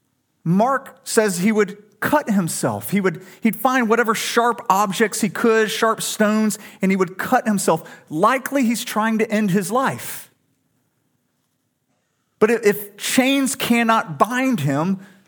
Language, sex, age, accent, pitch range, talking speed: English, male, 40-59, American, 140-210 Hz, 135 wpm